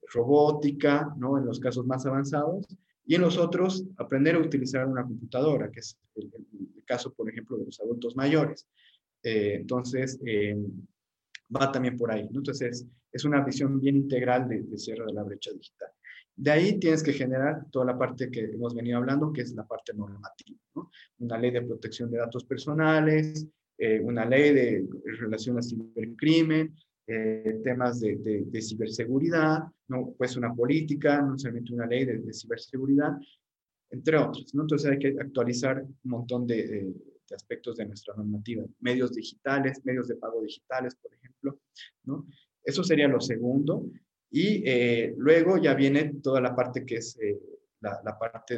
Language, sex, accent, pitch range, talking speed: Spanish, male, Mexican, 115-145 Hz, 175 wpm